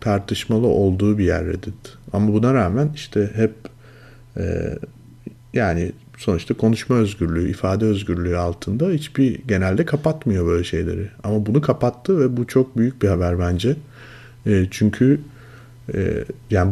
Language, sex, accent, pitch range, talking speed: Turkish, male, native, 100-125 Hz, 120 wpm